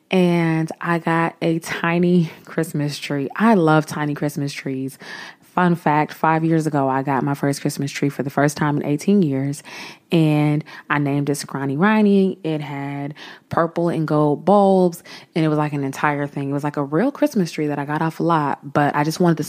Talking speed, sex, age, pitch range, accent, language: 205 wpm, female, 20-39, 150-195 Hz, American, English